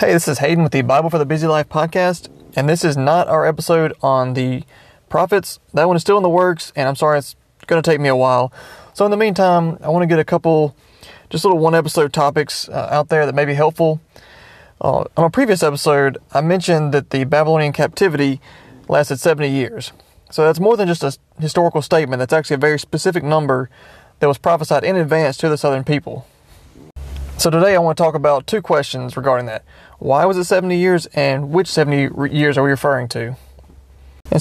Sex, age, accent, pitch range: male, 30-49, American, 135-165 Hz